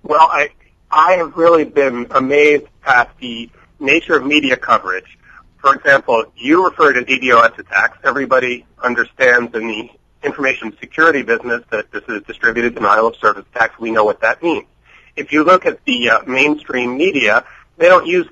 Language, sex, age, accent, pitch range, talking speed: English, male, 40-59, American, 135-185 Hz, 165 wpm